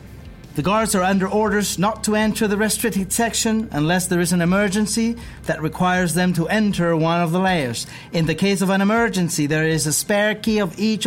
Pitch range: 170-215 Hz